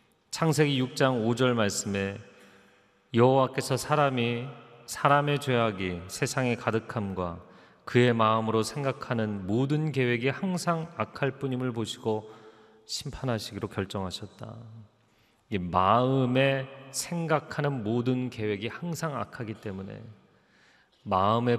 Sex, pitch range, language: male, 110-135 Hz, Korean